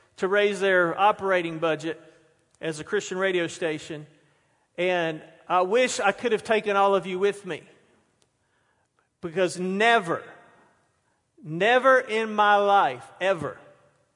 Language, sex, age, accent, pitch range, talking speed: English, male, 40-59, American, 180-250 Hz, 125 wpm